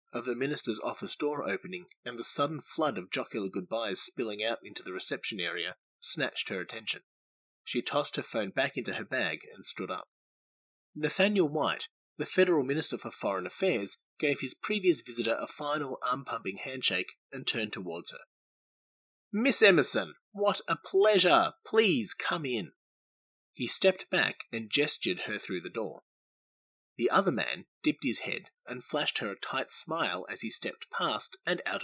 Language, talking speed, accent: English, 165 wpm, Australian